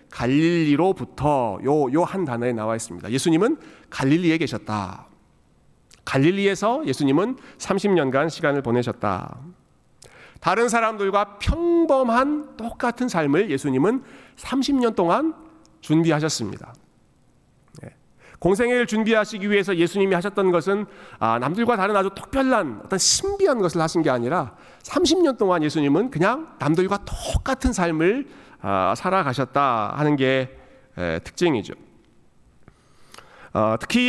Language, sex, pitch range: Korean, male, 140-210 Hz